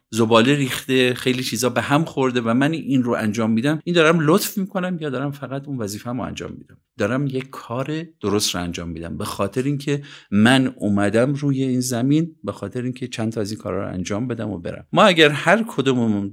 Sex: male